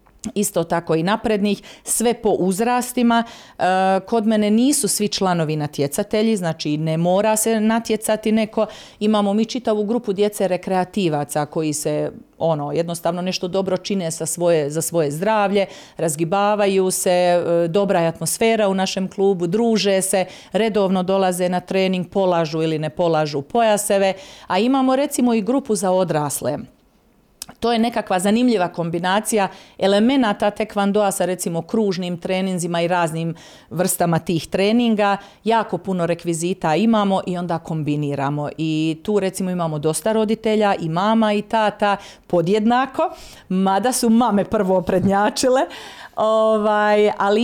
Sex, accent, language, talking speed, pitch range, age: female, native, Croatian, 130 wpm, 170-220 Hz, 40-59